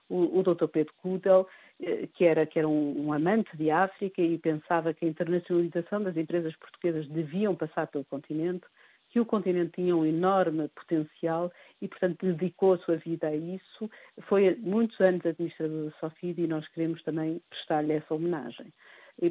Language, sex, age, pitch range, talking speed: Portuguese, female, 50-69, 155-185 Hz, 170 wpm